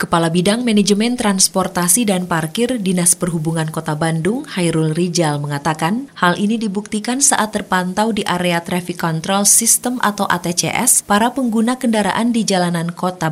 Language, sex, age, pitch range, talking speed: Indonesian, female, 30-49, 145-200 Hz, 140 wpm